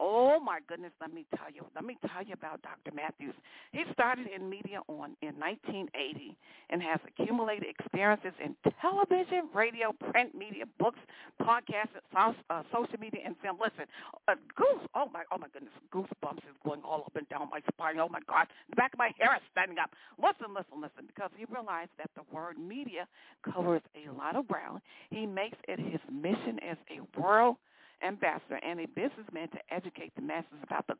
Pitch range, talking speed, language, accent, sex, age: 170-250 Hz, 190 wpm, English, American, female, 50-69